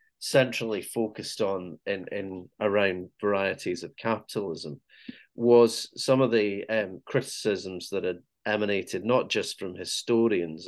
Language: English